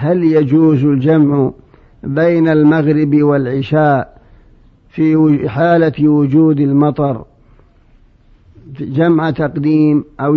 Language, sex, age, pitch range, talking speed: Arabic, male, 50-69, 145-160 Hz, 75 wpm